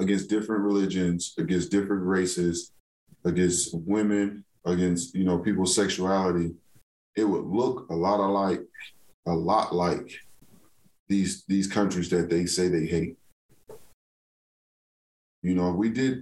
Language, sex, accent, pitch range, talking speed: English, male, American, 90-100 Hz, 130 wpm